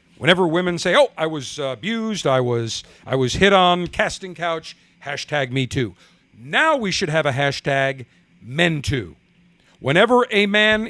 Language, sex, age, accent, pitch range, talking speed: English, male, 50-69, American, 135-195 Hz, 160 wpm